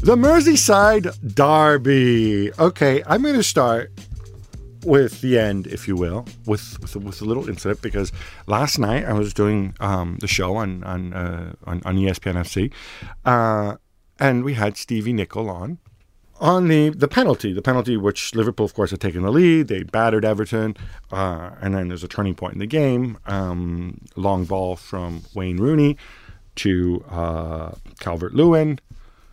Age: 50-69